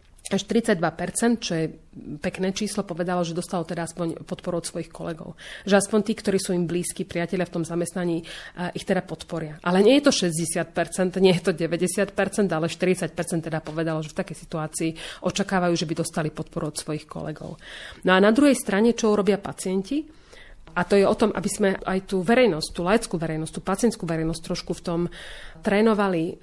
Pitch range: 165-195 Hz